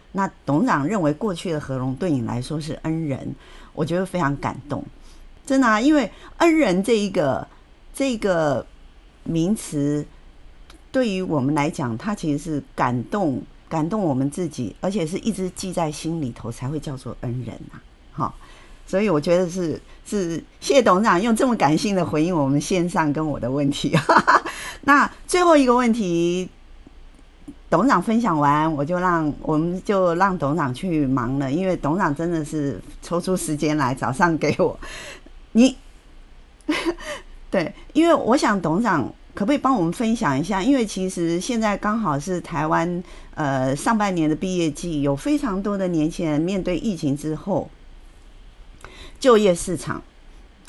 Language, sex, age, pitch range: Chinese, female, 50-69, 145-205 Hz